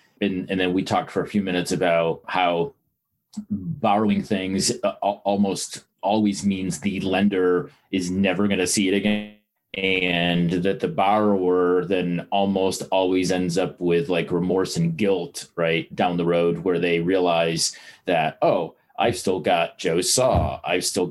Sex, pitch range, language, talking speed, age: male, 90-105 Hz, English, 155 wpm, 30-49